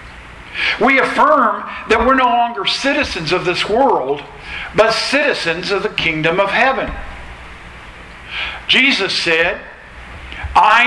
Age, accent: 60-79, American